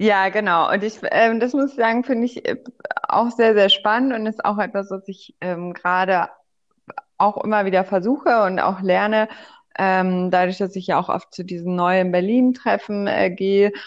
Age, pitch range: 20-39, 185-225 Hz